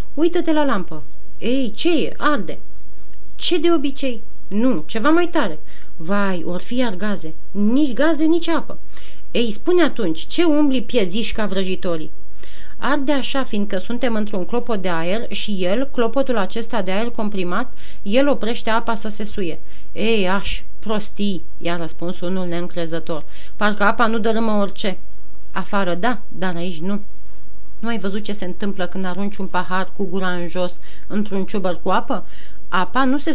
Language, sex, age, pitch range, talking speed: Romanian, female, 30-49, 185-250 Hz, 160 wpm